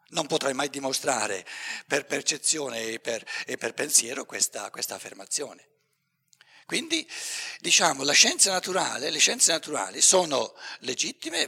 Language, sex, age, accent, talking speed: Italian, male, 60-79, native, 125 wpm